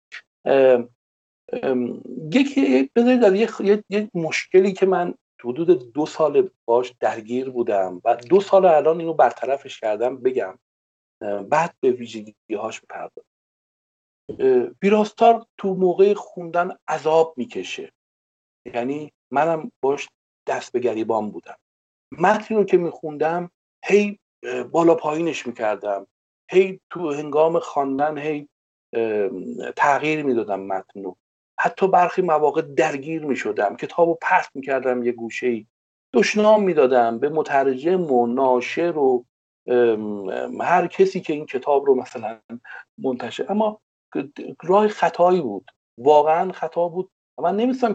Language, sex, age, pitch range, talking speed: Persian, male, 50-69, 120-190 Hz, 110 wpm